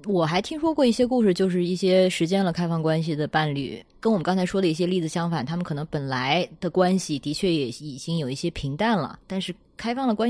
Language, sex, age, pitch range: Chinese, female, 20-39, 155-205 Hz